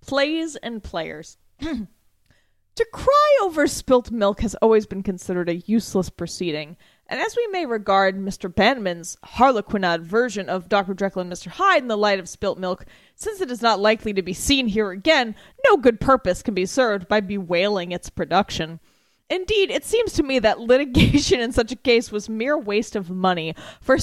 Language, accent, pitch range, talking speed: English, American, 190-255 Hz, 180 wpm